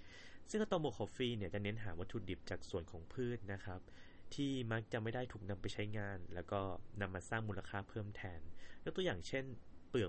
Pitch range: 90-115 Hz